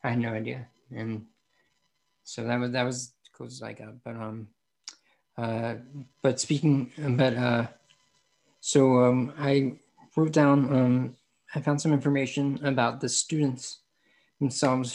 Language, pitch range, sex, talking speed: English, 120-135 Hz, male, 145 wpm